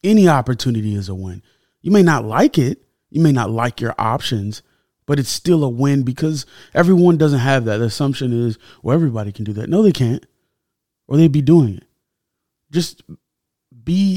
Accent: American